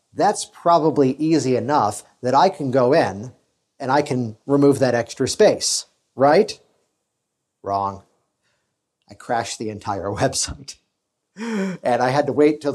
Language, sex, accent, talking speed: English, male, American, 135 wpm